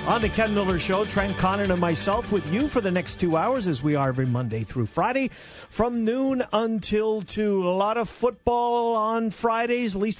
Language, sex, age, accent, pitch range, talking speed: English, male, 50-69, American, 140-190 Hz, 205 wpm